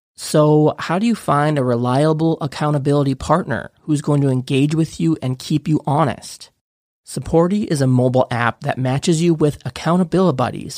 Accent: American